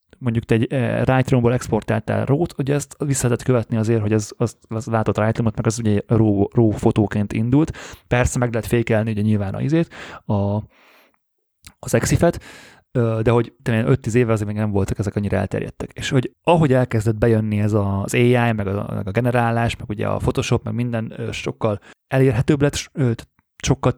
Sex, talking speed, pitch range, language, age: male, 175 wpm, 110-125 Hz, Hungarian, 30-49